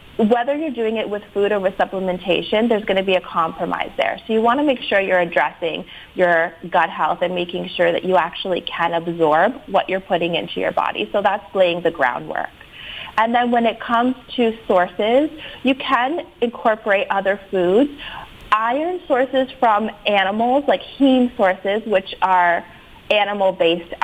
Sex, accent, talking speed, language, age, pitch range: female, American, 170 wpm, English, 30-49, 175-235 Hz